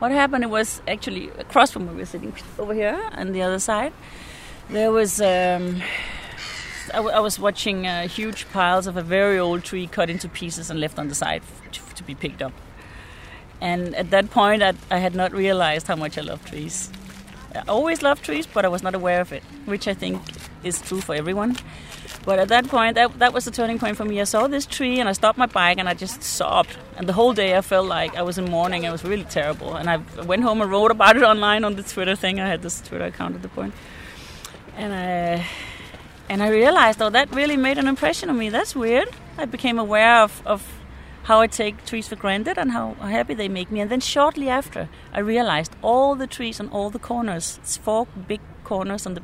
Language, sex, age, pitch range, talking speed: English, female, 30-49, 180-230 Hz, 230 wpm